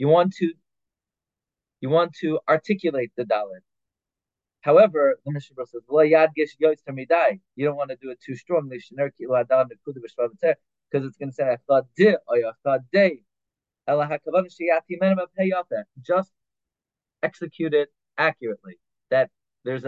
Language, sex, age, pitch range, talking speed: English, male, 30-49, 125-175 Hz, 95 wpm